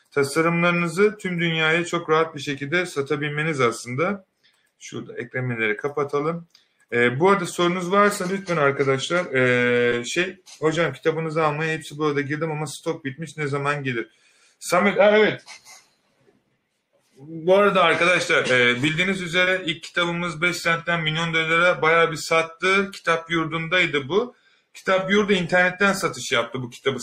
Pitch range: 140-180 Hz